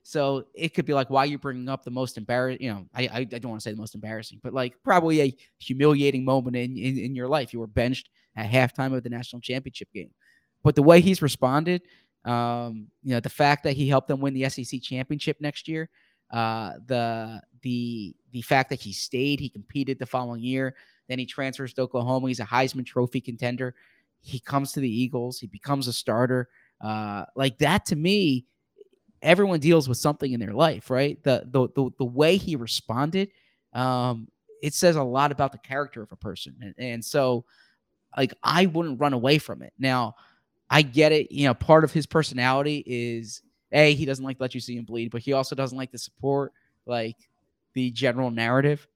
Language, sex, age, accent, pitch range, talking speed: English, male, 20-39, American, 120-145 Hz, 210 wpm